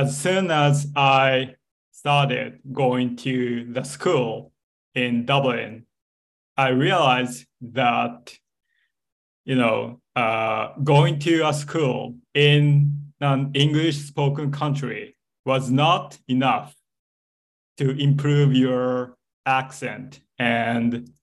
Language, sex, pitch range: Japanese, male, 125-140 Hz